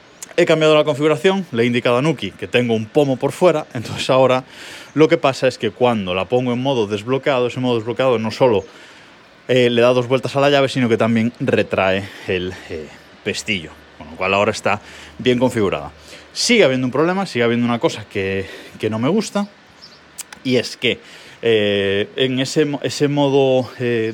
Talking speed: 190 wpm